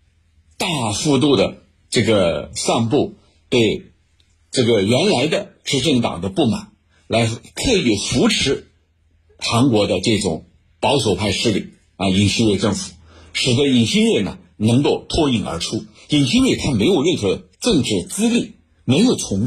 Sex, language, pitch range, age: male, Chinese, 85-120 Hz, 60-79